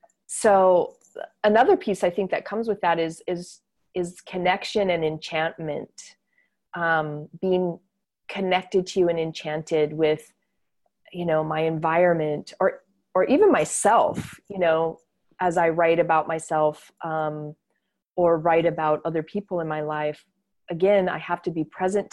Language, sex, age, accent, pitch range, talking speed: English, female, 30-49, American, 160-190 Hz, 145 wpm